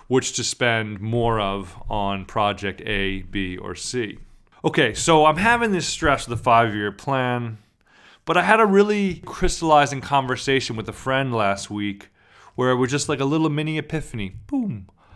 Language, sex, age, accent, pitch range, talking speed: English, male, 30-49, American, 110-155 Hz, 170 wpm